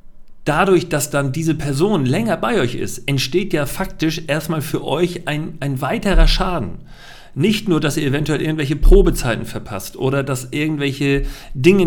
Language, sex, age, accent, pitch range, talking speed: German, male, 40-59, German, 125-165 Hz, 155 wpm